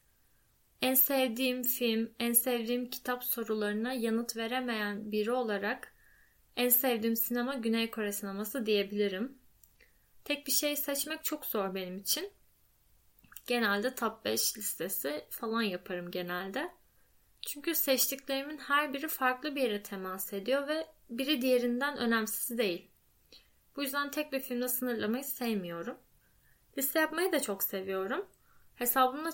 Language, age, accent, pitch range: Turkish, 10-29, native, 205-275 Hz